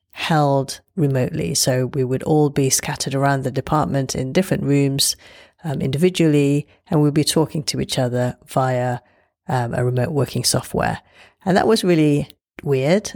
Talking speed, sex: 155 wpm, female